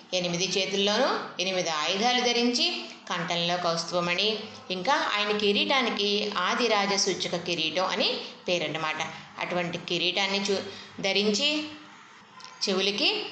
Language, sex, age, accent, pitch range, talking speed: Telugu, female, 20-39, native, 175-220 Hz, 85 wpm